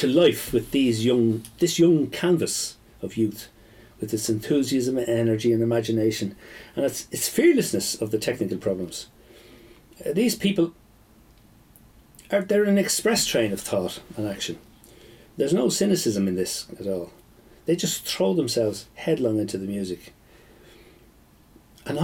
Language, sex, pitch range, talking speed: English, male, 115-185 Hz, 145 wpm